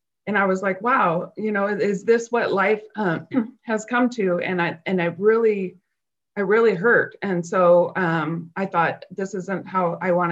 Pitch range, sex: 175-210 Hz, female